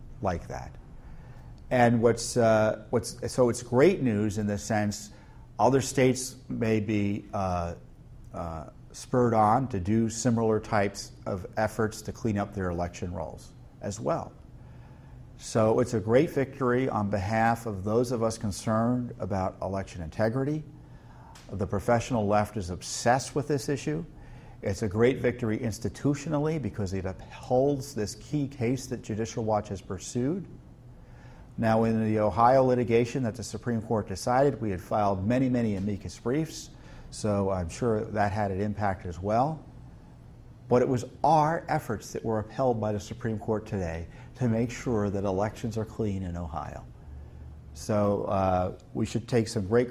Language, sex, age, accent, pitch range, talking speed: English, male, 50-69, American, 105-125 Hz, 155 wpm